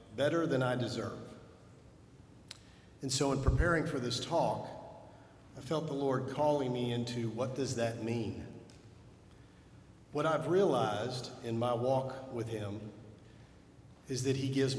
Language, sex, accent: English, male, American